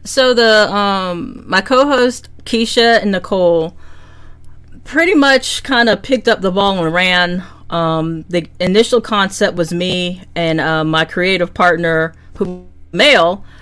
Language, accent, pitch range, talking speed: English, American, 165-205 Hz, 135 wpm